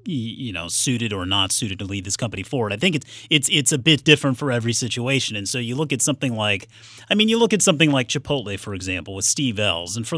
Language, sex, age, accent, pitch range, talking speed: English, male, 30-49, American, 110-145 Hz, 260 wpm